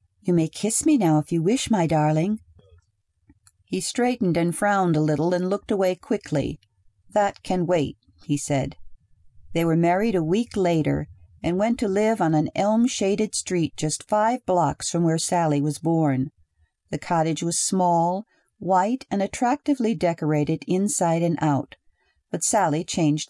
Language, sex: English, female